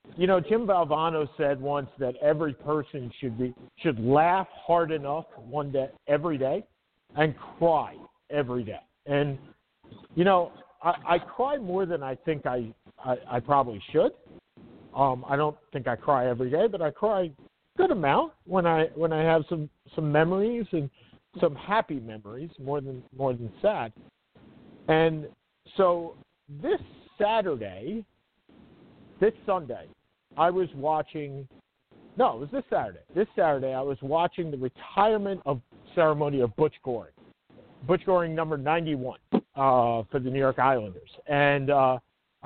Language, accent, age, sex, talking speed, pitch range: English, American, 50-69, male, 150 wpm, 135-170 Hz